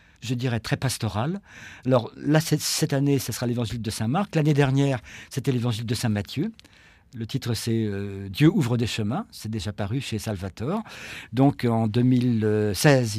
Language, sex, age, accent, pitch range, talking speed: French, male, 50-69, French, 110-135 Hz, 175 wpm